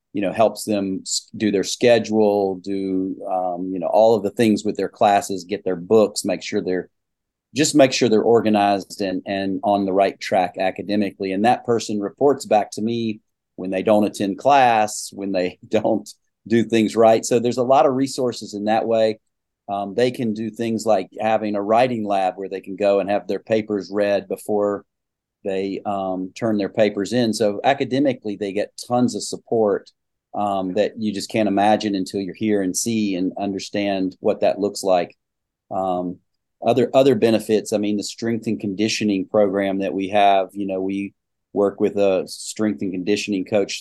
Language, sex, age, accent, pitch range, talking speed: English, male, 40-59, American, 95-110 Hz, 190 wpm